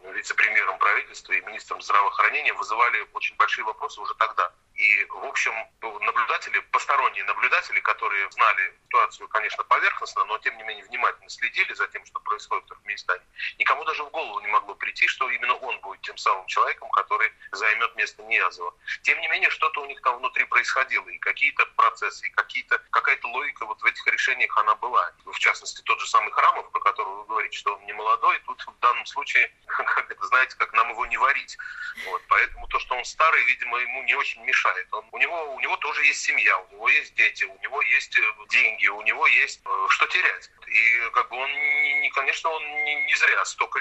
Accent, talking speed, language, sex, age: native, 195 wpm, Russian, male, 30-49